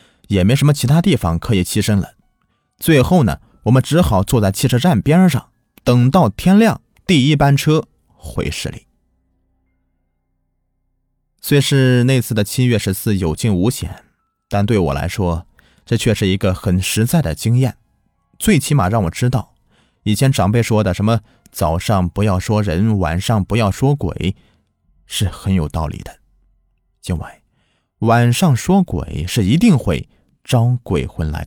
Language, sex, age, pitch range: Chinese, male, 20-39, 90-130 Hz